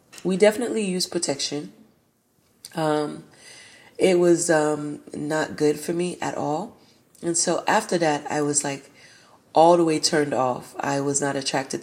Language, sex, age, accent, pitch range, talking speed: English, female, 20-39, American, 140-165 Hz, 150 wpm